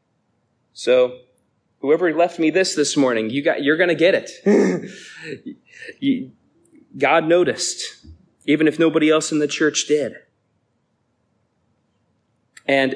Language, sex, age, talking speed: English, male, 30-49, 105 wpm